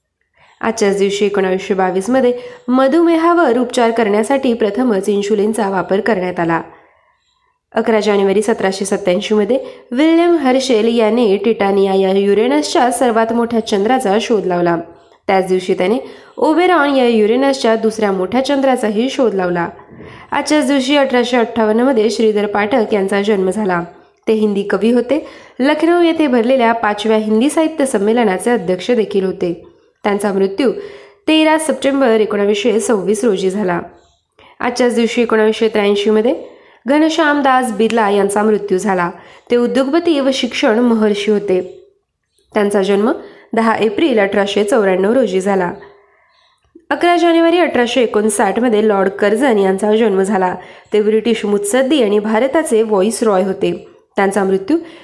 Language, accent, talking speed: Marathi, native, 120 wpm